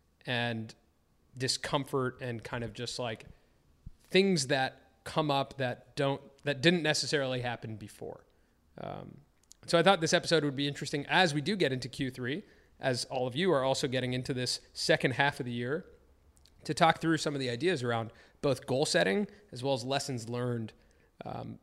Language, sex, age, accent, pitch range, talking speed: English, male, 30-49, American, 115-145 Hz, 180 wpm